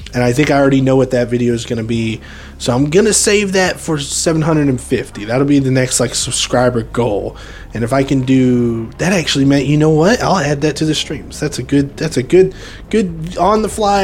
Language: English